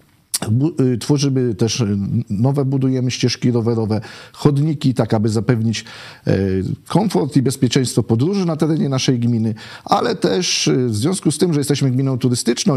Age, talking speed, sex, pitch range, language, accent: 40-59, 130 wpm, male, 115-135 Hz, Polish, native